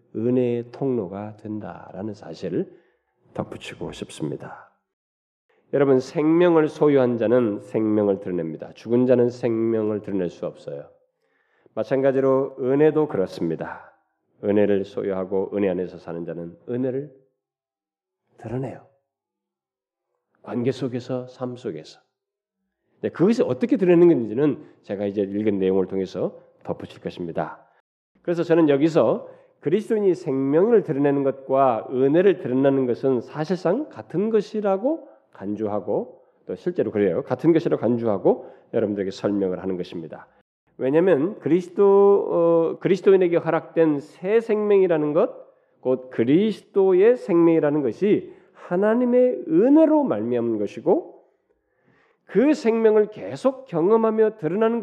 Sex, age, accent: male, 40-59, native